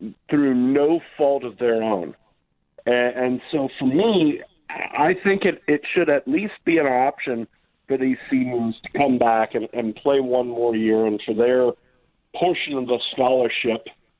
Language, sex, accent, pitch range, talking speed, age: English, male, American, 120-160 Hz, 170 wpm, 40-59